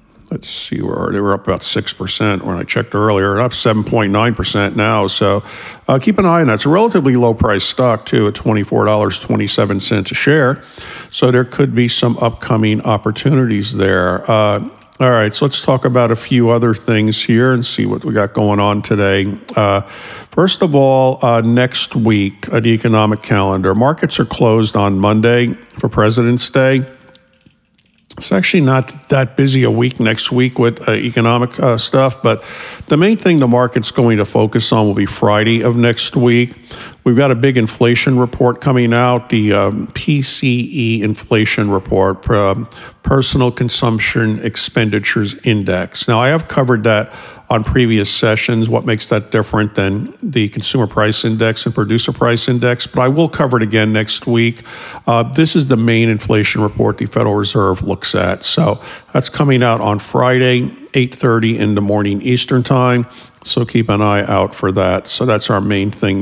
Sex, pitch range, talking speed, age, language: male, 105-125 Hz, 175 wpm, 50-69, English